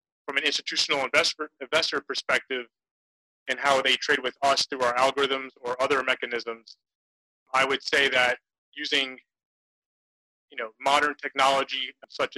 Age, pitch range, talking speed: 30-49, 125-140 Hz, 135 wpm